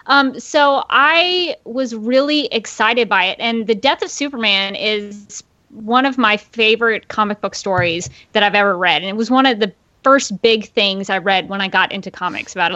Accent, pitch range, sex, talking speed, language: American, 215-265 Hz, female, 200 wpm, English